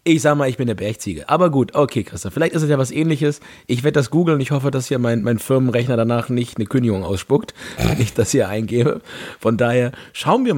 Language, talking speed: German, 240 wpm